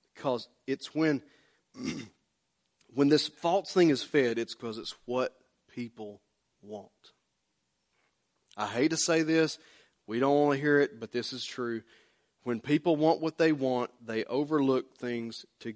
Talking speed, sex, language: 150 wpm, male, English